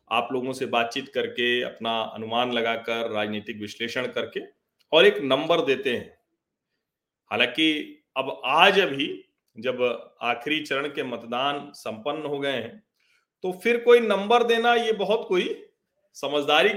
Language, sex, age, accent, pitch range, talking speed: Hindi, male, 40-59, native, 130-220 Hz, 135 wpm